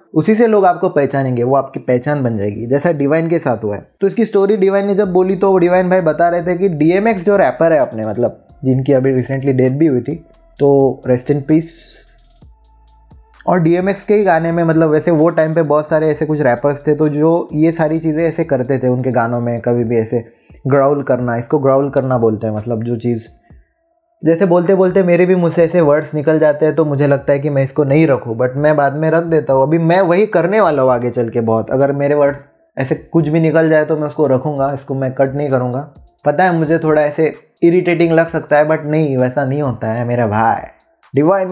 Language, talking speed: Hindi, 235 wpm